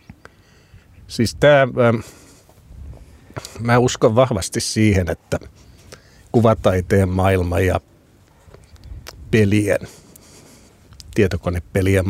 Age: 50-69